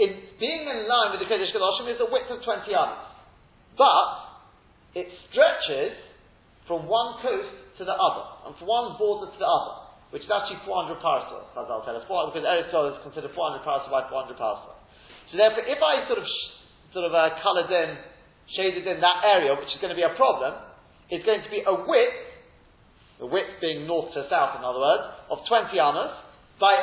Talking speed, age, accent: 205 wpm, 40-59, British